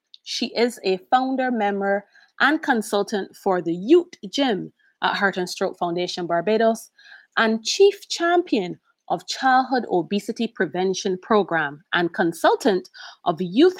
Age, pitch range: 30-49, 185-265 Hz